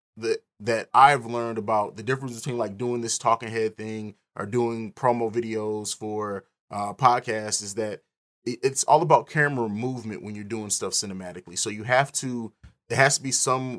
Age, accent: 20-39, American